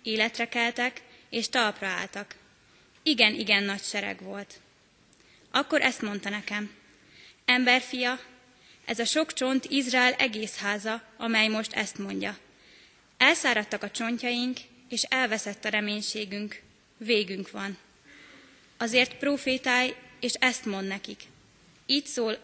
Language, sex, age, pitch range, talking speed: Hungarian, female, 20-39, 210-250 Hz, 115 wpm